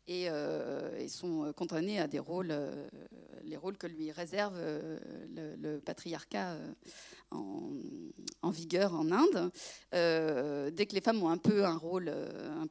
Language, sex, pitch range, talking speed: French, female, 170-215 Hz, 135 wpm